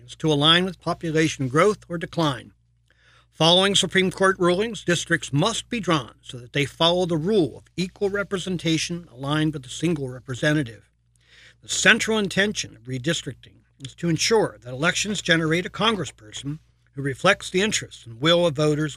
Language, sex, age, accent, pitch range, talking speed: English, male, 50-69, American, 135-185 Hz, 160 wpm